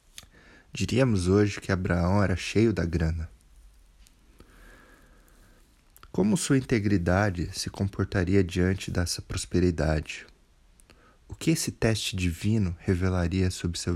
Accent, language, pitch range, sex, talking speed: Brazilian, Portuguese, 85-105 Hz, male, 105 wpm